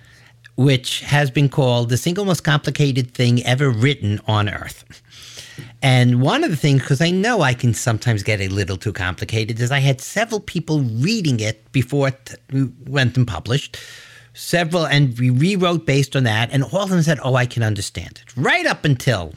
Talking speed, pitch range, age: 190 wpm, 115-145 Hz, 50-69